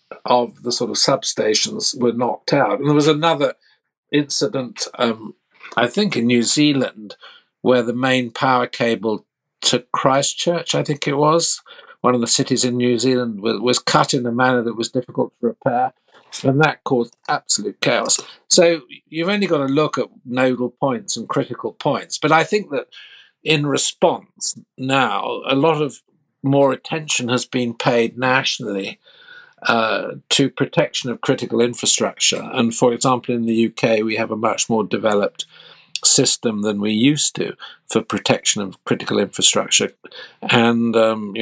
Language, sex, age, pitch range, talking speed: English, male, 50-69, 115-145 Hz, 160 wpm